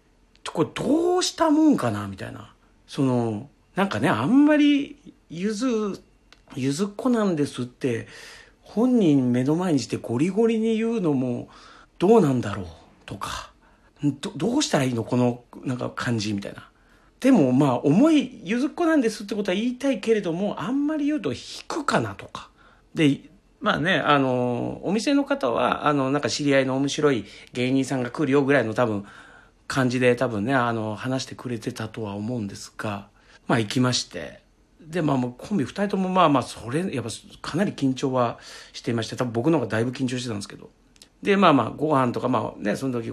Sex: male